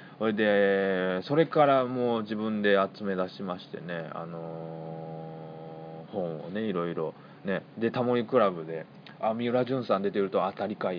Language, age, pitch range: Japanese, 20-39, 90-125 Hz